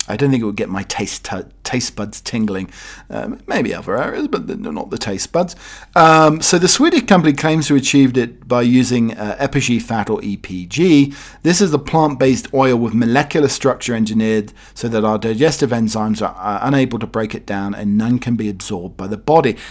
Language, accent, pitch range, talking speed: English, British, 110-145 Hz, 205 wpm